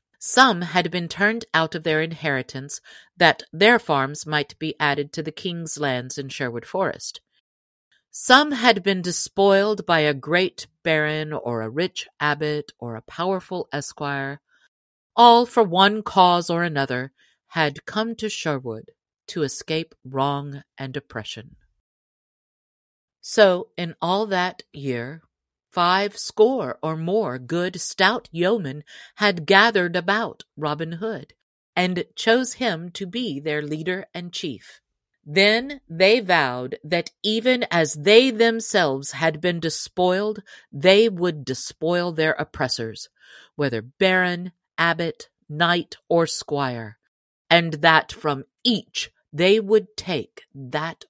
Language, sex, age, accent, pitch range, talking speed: English, female, 50-69, American, 145-195 Hz, 125 wpm